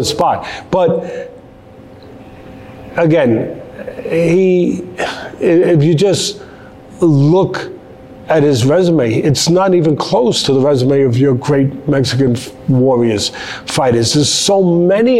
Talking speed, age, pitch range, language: 105 wpm, 50-69, 145-185 Hz, English